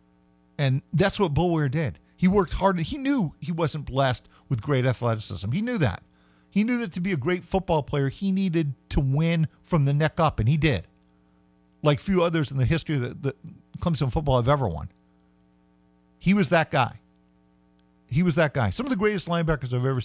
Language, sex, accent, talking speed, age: English, male, American, 200 wpm, 50-69